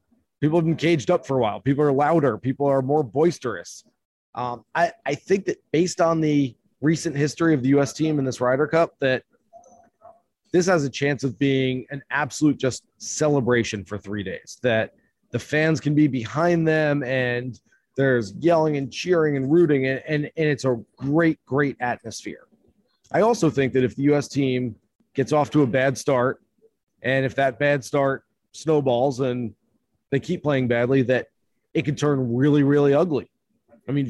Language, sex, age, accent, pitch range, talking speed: English, male, 30-49, American, 135-170 Hz, 180 wpm